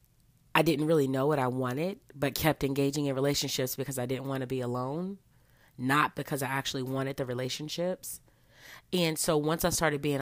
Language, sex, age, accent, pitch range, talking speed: English, female, 30-49, American, 130-155 Hz, 190 wpm